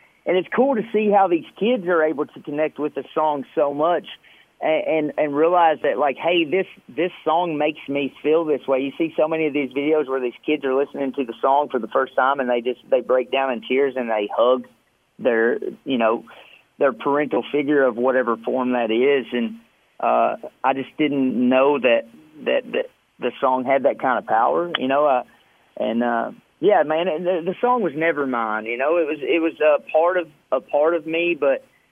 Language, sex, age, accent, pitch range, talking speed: English, male, 40-59, American, 130-170 Hz, 220 wpm